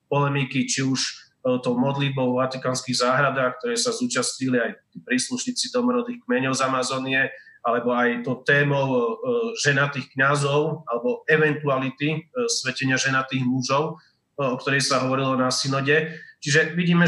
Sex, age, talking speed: male, 30-49, 125 wpm